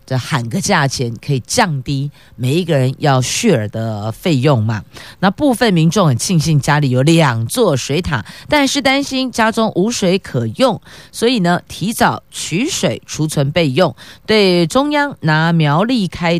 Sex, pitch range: female, 130-180 Hz